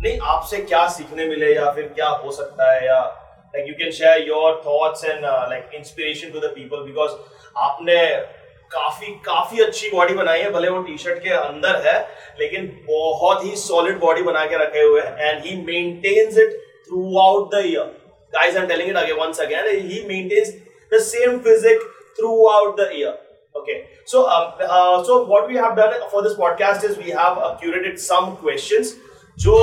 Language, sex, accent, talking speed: Hindi, male, native, 115 wpm